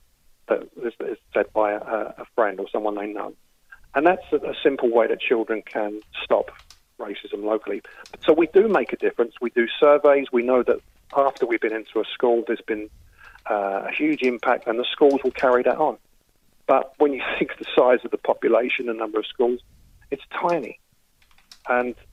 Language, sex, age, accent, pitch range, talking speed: English, male, 40-59, British, 110-155 Hz, 190 wpm